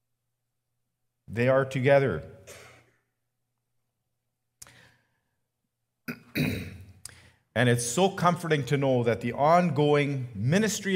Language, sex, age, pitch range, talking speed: English, male, 50-69, 120-150 Hz, 70 wpm